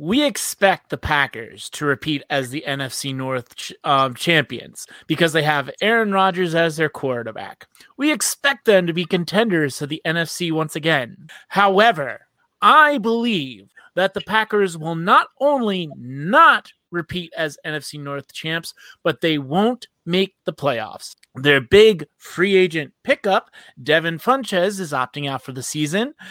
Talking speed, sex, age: 150 wpm, male, 30-49